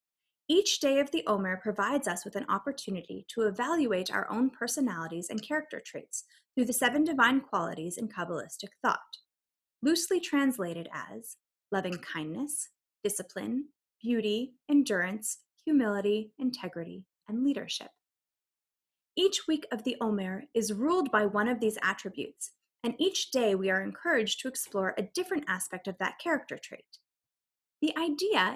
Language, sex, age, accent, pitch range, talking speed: English, female, 20-39, American, 205-295 Hz, 140 wpm